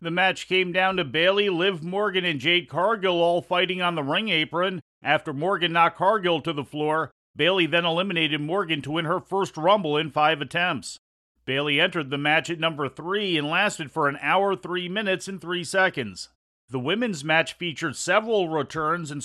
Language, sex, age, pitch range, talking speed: English, male, 40-59, 150-180 Hz, 185 wpm